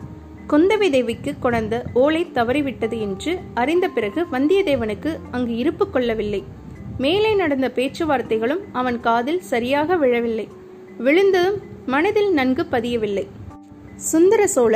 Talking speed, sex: 95 wpm, female